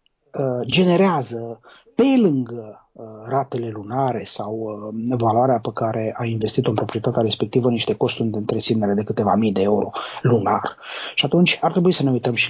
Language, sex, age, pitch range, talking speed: Romanian, male, 20-39, 115-135 Hz, 155 wpm